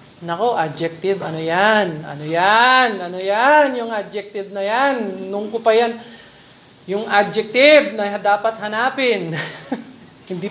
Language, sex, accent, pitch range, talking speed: Filipino, male, native, 195-245 Hz, 120 wpm